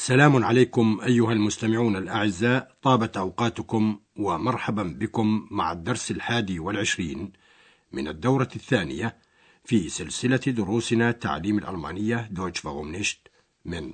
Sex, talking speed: male, 100 wpm